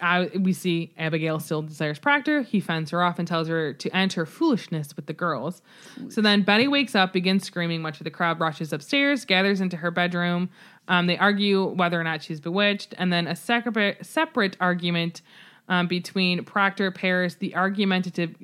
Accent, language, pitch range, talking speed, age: American, English, 170-205 Hz, 185 wpm, 20-39